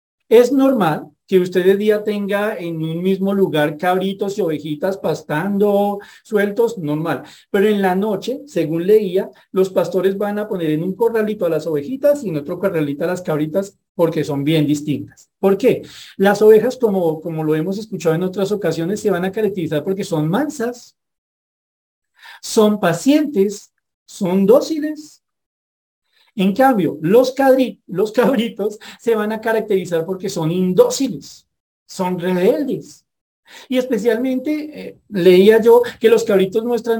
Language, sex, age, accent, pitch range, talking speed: Spanish, male, 40-59, Colombian, 180-225 Hz, 150 wpm